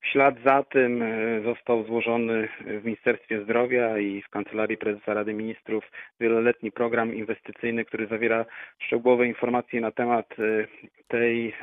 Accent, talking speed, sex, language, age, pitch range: native, 130 wpm, male, Polish, 40-59, 115-130 Hz